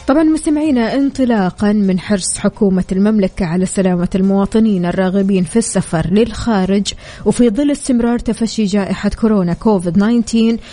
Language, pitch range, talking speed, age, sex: Arabic, 195-235 Hz, 125 wpm, 20-39, female